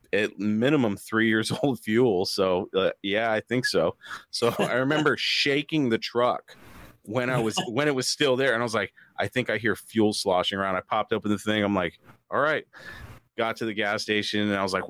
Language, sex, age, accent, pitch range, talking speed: English, male, 30-49, American, 95-120 Hz, 220 wpm